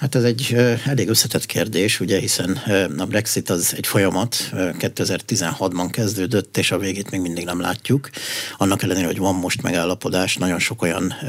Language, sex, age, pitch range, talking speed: Hungarian, male, 60-79, 90-115 Hz, 165 wpm